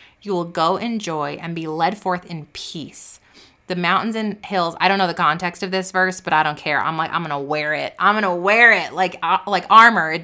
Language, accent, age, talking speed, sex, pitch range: English, American, 20-39, 245 wpm, female, 175-230 Hz